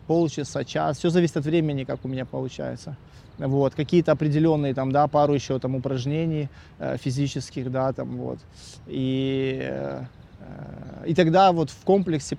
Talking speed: 130 wpm